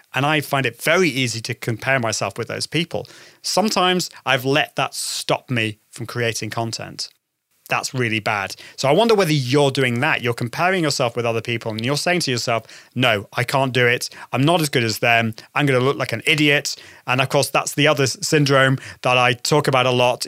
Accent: British